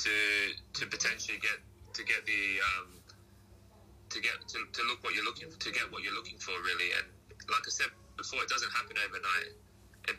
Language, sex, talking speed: English, male, 200 wpm